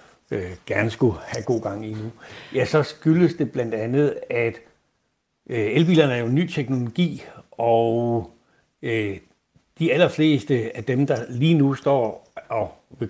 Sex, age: male, 60-79